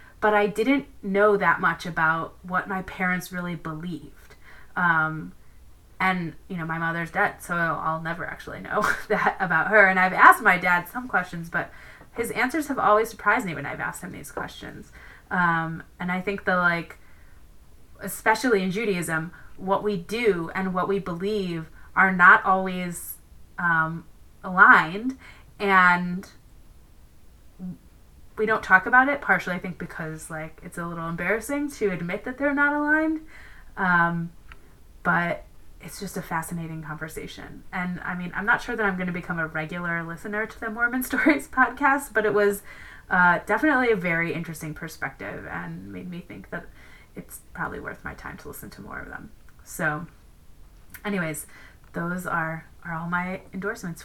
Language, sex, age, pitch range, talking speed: English, female, 30-49, 165-205 Hz, 165 wpm